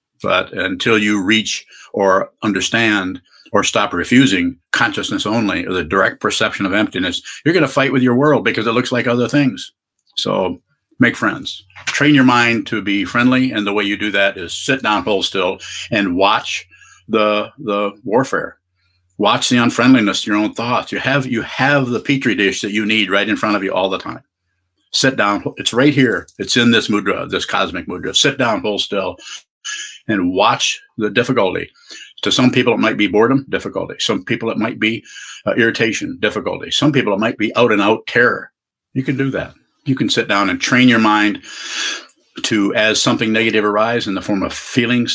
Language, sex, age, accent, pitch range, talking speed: English, male, 50-69, American, 105-130 Hz, 190 wpm